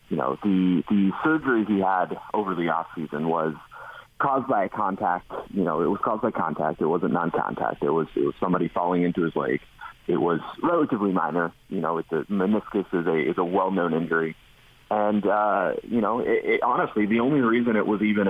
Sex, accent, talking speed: male, American, 215 wpm